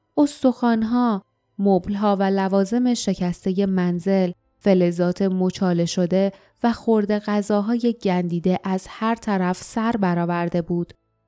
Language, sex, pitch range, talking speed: Persian, female, 185-245 Hz, 95 wpm